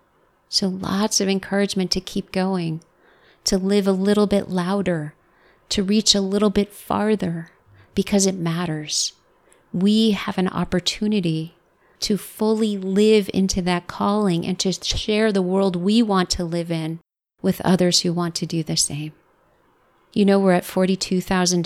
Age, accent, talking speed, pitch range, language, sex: 30-49, American, 150 wpm, 170-195 Hz, English, female